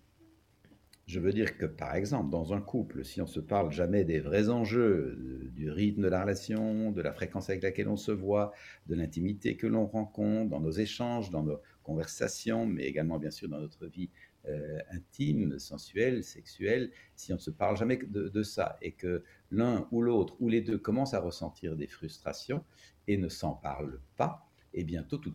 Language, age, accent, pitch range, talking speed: French, 60-79, French, 80-110 Hz, 200 wpm